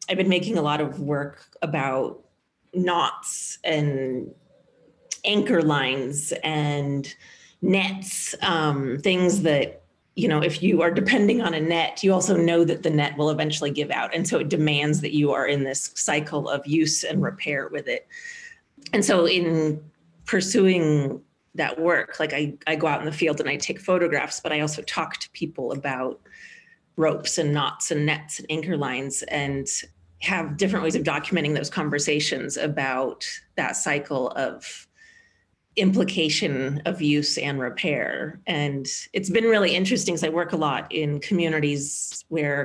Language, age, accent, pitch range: English, 30-49, American, 150-185 Hz